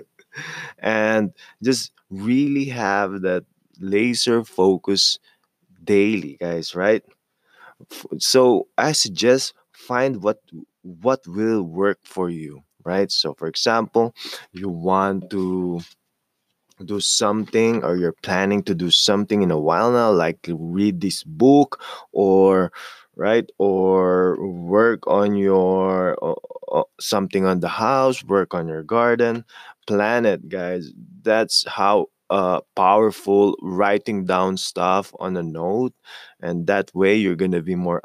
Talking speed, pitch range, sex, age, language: 125 wpm, 90-115 Hz, male, 20-39, English